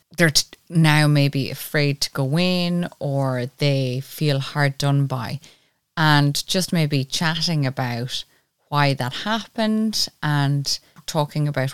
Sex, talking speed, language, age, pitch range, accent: female, 130 wpm, English, 20-39, 140-165 Hz, Irish